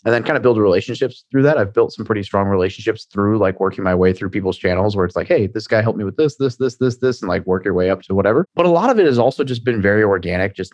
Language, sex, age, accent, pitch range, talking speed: English, male, 30-49, American, 90-115 Hz, 315 wpm